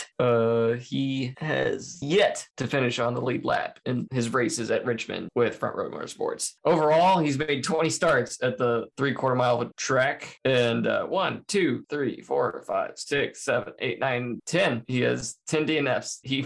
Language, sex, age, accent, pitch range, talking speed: English, male, 20-39, American, 125-155 Hz, 170 wpm